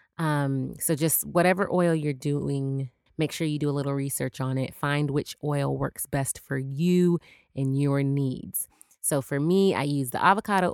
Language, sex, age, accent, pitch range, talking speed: English, female, 20-39, American, 140-170 Hz, 185 wpm